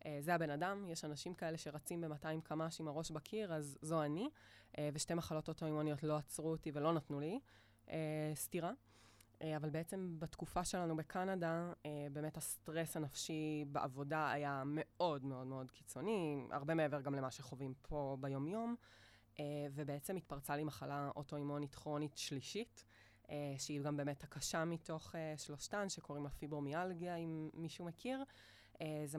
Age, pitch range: 20-39, 140-165 Hz